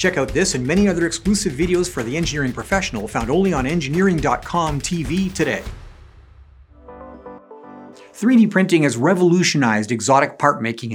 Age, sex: 50-69, male